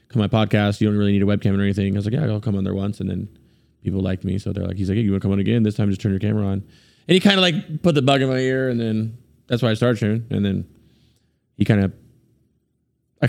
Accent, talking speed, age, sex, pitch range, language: American, 305 wpm, 20-39, male, 100-140 Hz, English